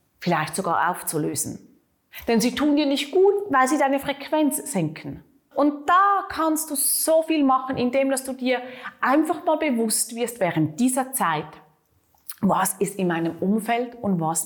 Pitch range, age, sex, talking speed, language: 205-265 Hz, 30-49, female, 160 wpm, German